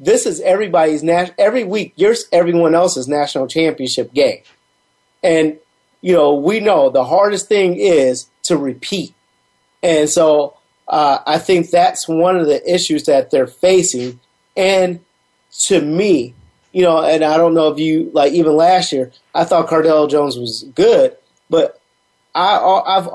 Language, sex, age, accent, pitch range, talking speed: English, male, 30-49, American, 150-185 Hz, 155 wpm